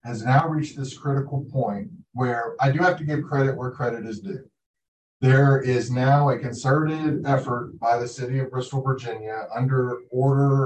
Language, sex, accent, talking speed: English, male, American, 175 wpm